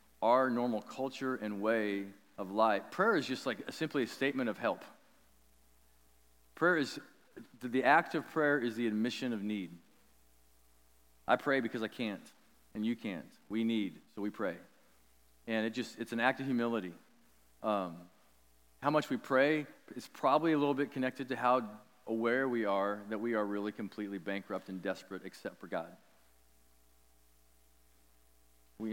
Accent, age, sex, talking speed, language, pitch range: American, 40-59, male, 160 wpm, English, 100-130 Hz